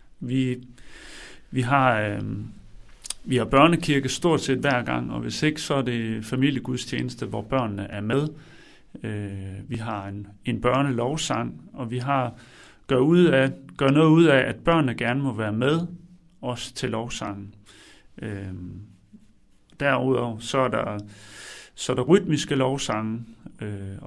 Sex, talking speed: male, 145 wpm